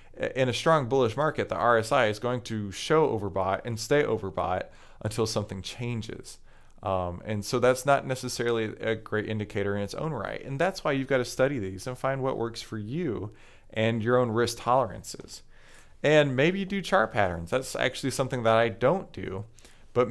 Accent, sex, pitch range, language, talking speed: American, male, 105-135 Hz, English, 190 wpm